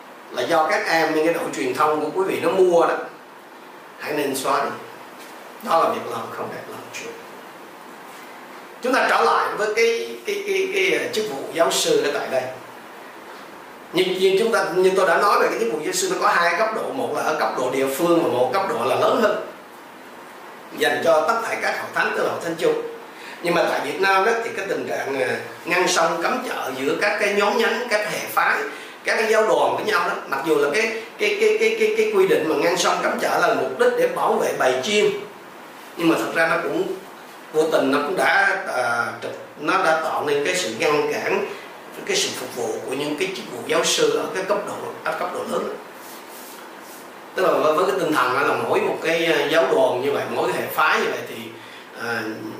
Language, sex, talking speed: Vietnamese, male, 225 wpm